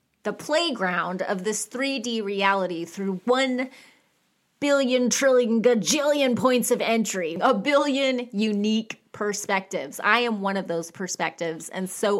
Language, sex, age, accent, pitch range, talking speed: English, female, 30-49, American, 190-255 Hz, 130 wpm